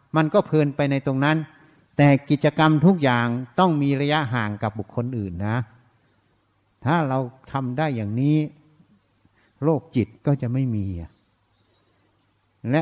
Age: 60-79